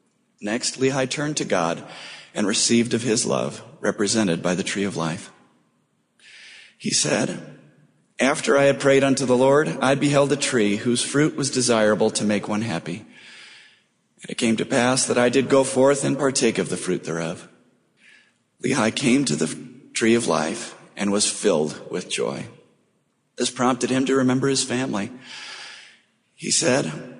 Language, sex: English, male